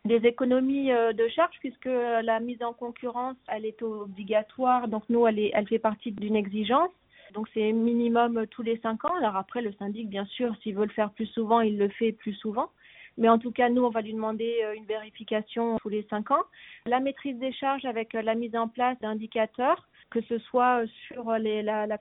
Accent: French